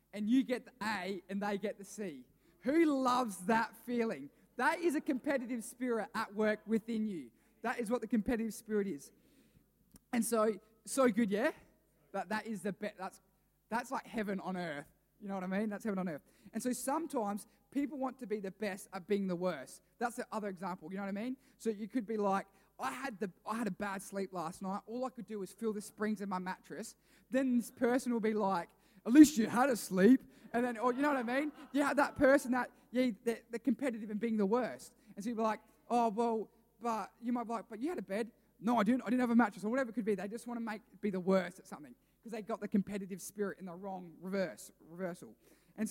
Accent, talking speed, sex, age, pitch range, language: Australian, 240 wpm, male, 20-39, 200-245 Hz, English